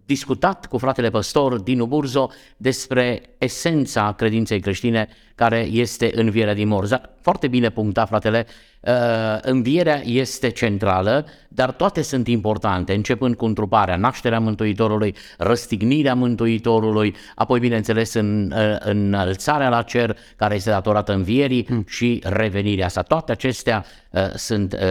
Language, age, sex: Romanian, 50-69, male